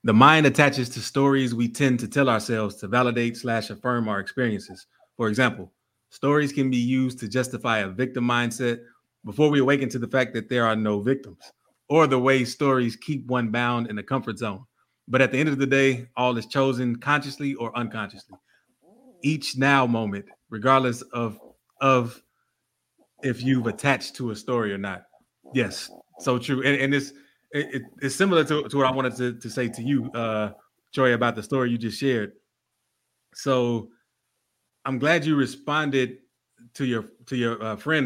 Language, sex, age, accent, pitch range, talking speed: English, male, 30-49, American, 115-140 Hz, 180 wpm